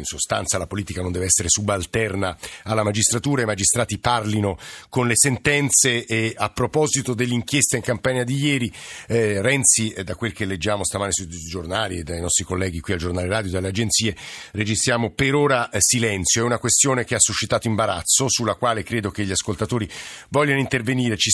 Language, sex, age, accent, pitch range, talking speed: Italian, male, 50-69, native, 100-125 Hz, 175 wpm